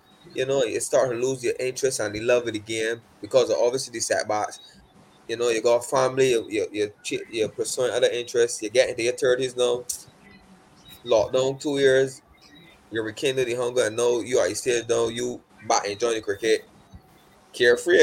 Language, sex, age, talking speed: English, male, 20-39, 190 wpm